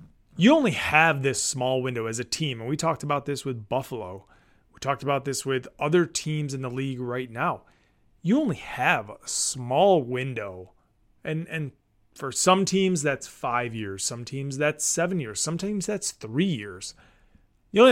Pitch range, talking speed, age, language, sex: 125-185 Hz, 180 wpm, 30-49, English, male